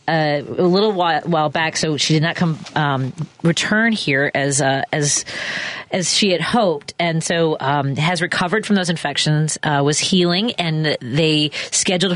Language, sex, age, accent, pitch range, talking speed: English, female, 40-59, American, 150-180 Hz, 175 wpm